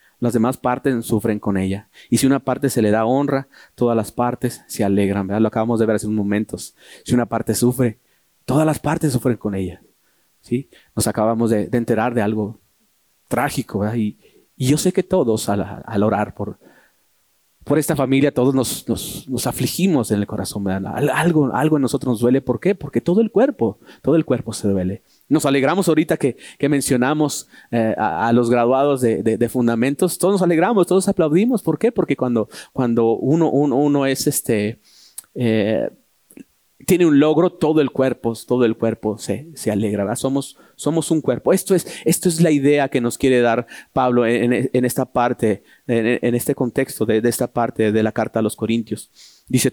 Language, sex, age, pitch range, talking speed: Spanish, male, 30-49, 110-145 Hz, 200 wpm